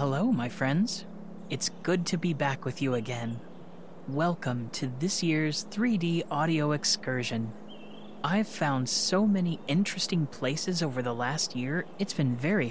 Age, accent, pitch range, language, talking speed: 30-49, American, 135-205 Hz, English, 145 wpm